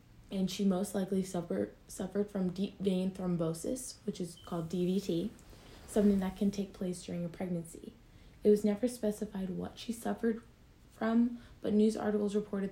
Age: 20-39